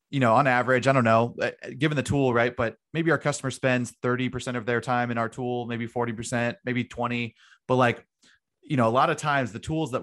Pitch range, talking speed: 120-135 Hz, 240 wpm